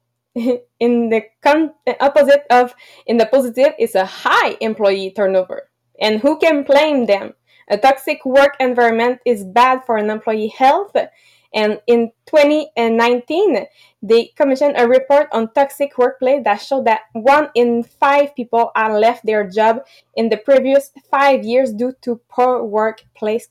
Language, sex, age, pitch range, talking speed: English, female, 20-39, 220-275 Hz, 145 wpm